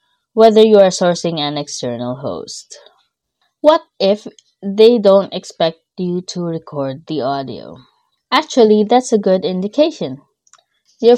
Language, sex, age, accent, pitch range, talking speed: English, female, 20-39, Filipino, 165-230 Hz, 125 wpm